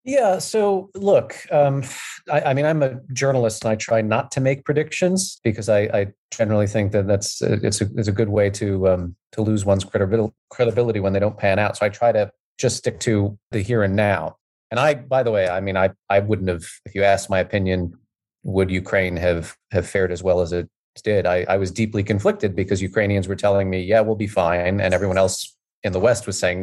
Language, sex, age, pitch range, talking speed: English, male, 30-49, 100-120 Hz, 225 wpm